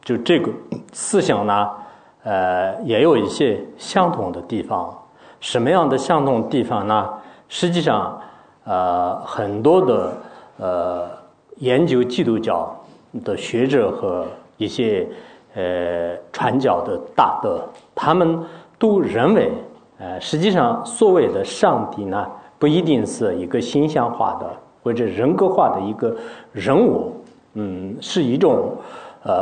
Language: English